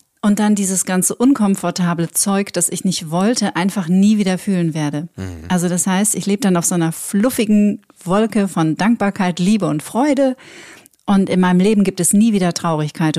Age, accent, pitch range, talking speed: 40-59, German, 180-220 Hz, 180 wpm